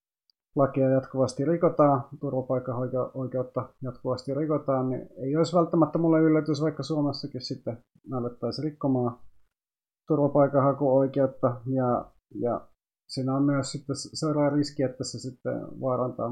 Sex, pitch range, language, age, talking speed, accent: male, 115-140 Hz, Finnish, 30-49, 105 wpm, native